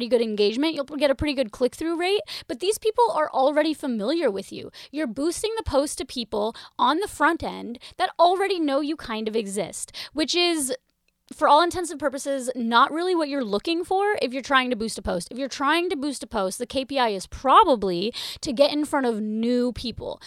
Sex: female